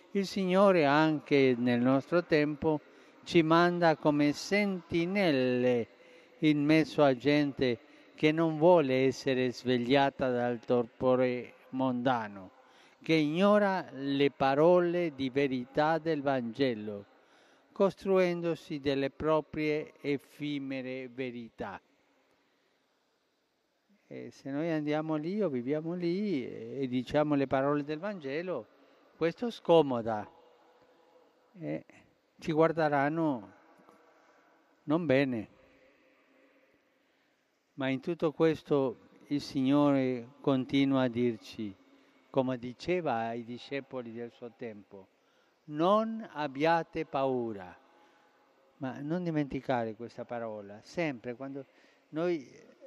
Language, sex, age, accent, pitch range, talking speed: Italian, male, 50-69, native, 130-165 Hz, 95 wpm